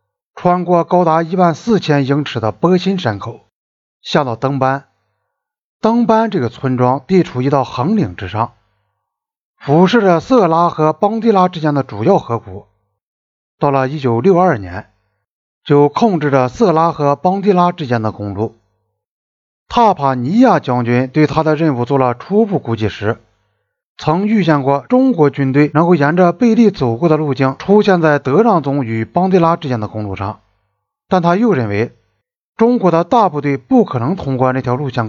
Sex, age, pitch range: male, 50-69, 115-185 Hz